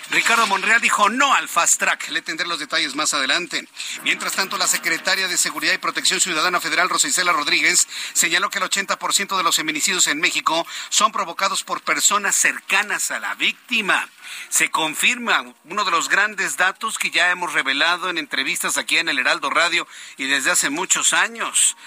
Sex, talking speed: male, 180 wpm